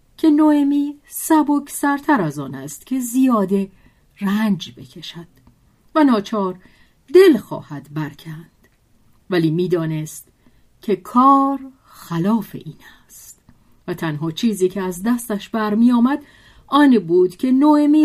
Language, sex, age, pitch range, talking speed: Persian, female, 40-59, 170-250 Hz, 115 wpm